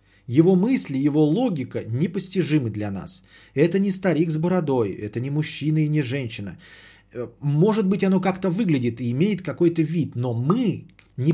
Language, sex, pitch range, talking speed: Bulgarian, male, 115-175 Hz, 160 wpm